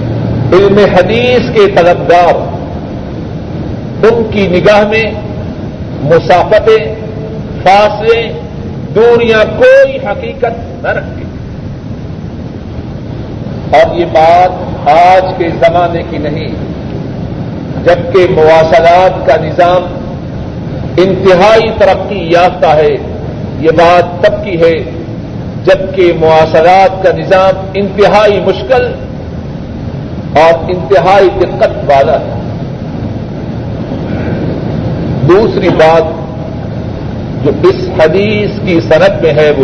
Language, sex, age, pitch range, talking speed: Urdu, male, 50-69, 160-200 Hz, 85 wpm